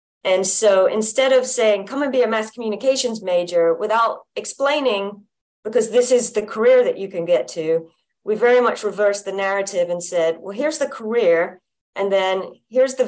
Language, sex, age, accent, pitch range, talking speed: English, female, 40-59, American, 175-225 Hz, 185 wpm